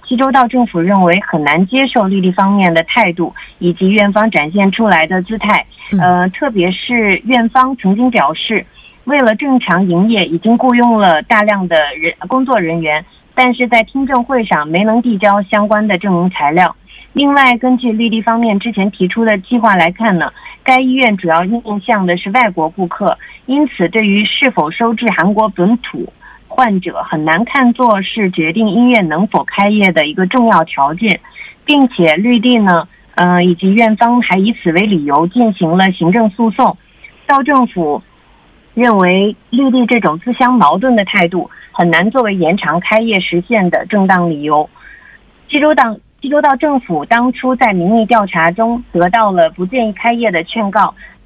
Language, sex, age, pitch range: Korean, female, 30-49, 180-240 Hz